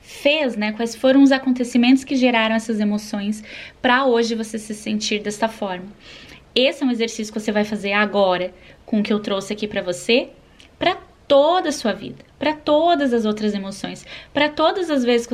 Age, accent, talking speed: 10-29, Brazilian, 190 wpm